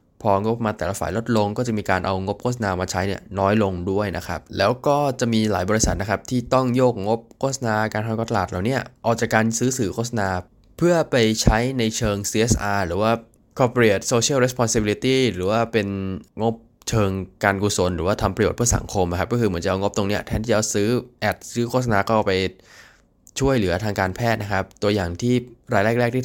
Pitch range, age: 95-115 Hz, 20-39